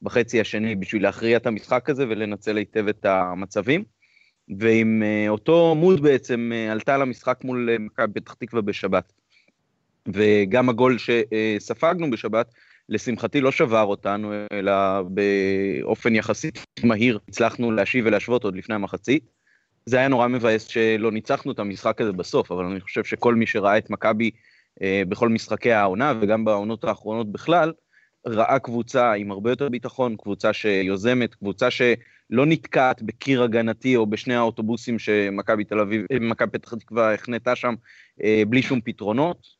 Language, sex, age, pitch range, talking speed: Hebrew, male, 30-49, 105-125 Hz, 150 wpm